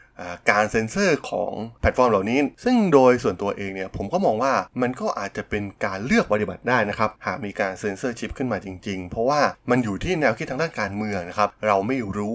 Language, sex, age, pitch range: Thai, male, 20-39, 95-115 Hz